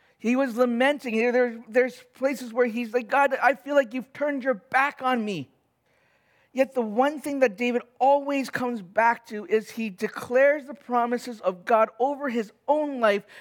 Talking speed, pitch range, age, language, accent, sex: 175 wpm, 225-275 Hz, 50-69, English, American, male